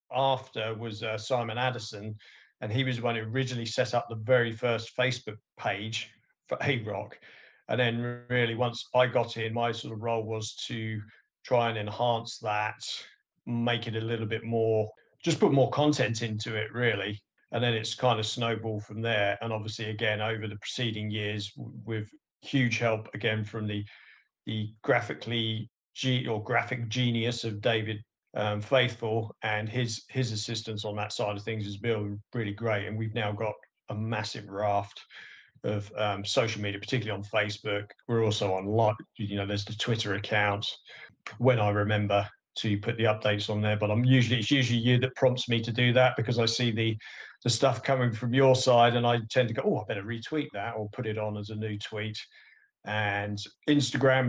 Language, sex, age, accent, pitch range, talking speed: English, male, 40-59, British, 105-125 Hz, 190 wpm